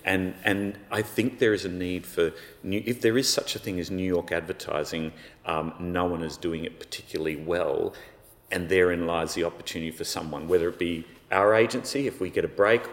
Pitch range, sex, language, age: 85-125 Hz, male, English, 30-49